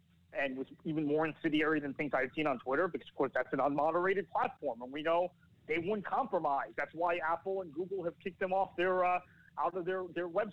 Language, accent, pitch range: English, American, 145-195 Hz